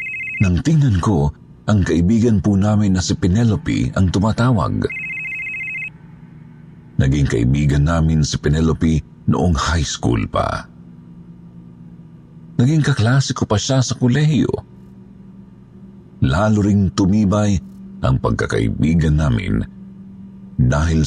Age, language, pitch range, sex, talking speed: 50-69, Filipino, 80-135 Hz, male, 95 wpm